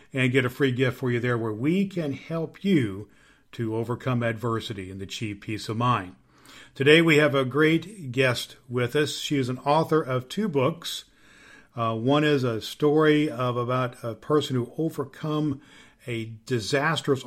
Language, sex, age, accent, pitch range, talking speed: English, male, 50-69, American, 120-150 Hz, 170 wpm